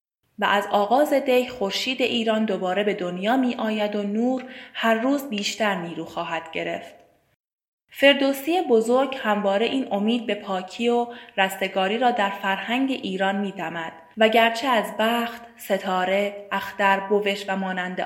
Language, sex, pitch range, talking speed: Persian, female, 195-245 Hz, 140 wpm